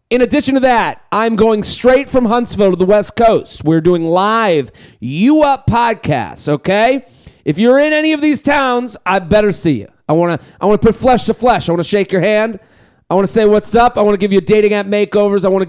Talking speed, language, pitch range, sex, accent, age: 235 wpm, English, 145-225 Hz, male, American, 30-49